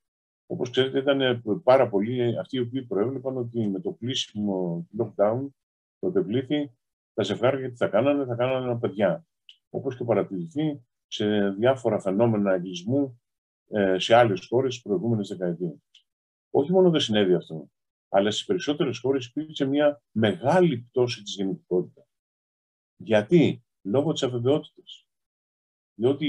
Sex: male